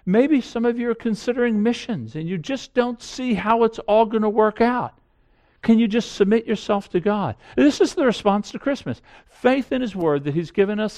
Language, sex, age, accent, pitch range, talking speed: English, male, 50-69, American, 135-215 Hz, 220 wpm